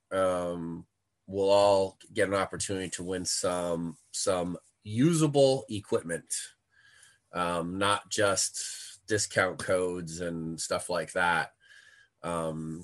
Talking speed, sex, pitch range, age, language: 105 wpm, male, 90-115 Hz, 20-39, English